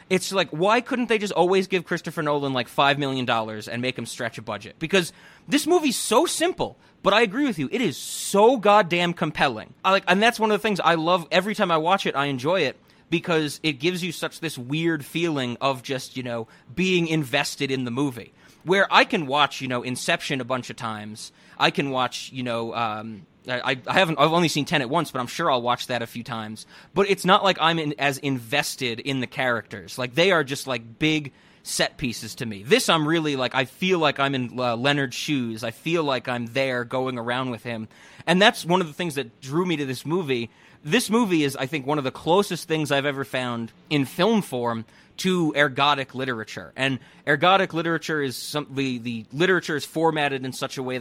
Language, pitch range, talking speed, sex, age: English, 125-170 Hz, 220 wpm, male, 30-49